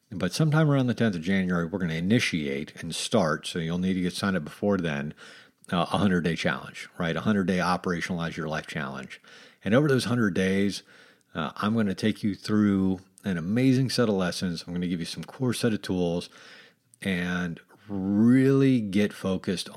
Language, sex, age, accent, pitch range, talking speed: English, male, 50-69, American, 90-110 Hz, 190 wpm